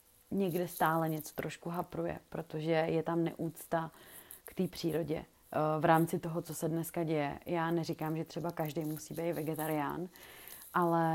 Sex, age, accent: female, 30-49, native